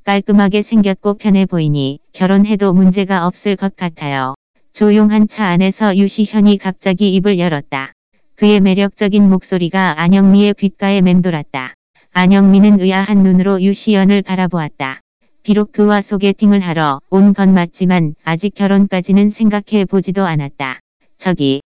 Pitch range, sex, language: 175-205 Hz, female, Korean